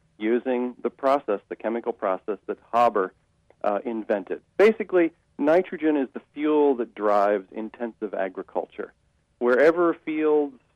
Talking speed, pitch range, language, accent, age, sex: 115 wpm, 110-140 Hz, English, American, 40-59, male